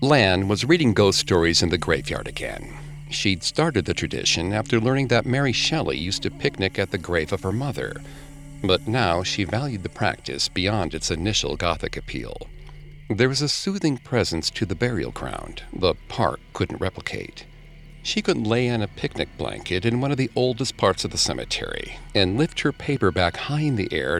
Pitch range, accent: 90-130 Hz, American